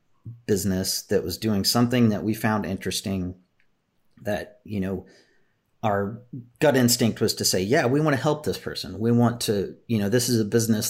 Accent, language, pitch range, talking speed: American, English, 90-115 Hz, 185 wpm